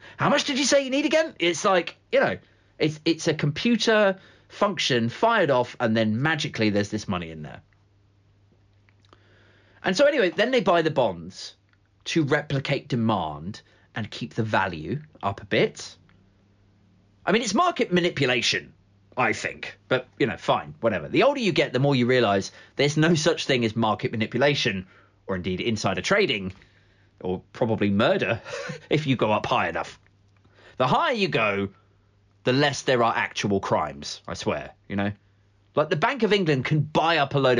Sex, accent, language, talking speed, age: male, British, English, 175 wpm, 30-49